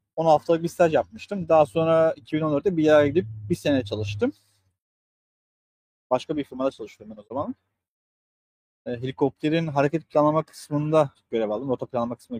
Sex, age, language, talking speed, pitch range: male, 40-59, Turkish, 140 wpm, 125-170 Hz